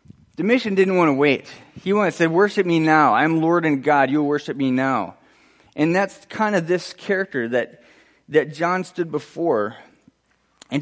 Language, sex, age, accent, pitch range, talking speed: English, male, 20-39, American, 115-150 Hz, 175 wpm